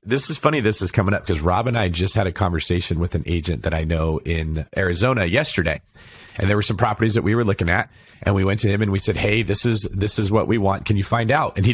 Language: English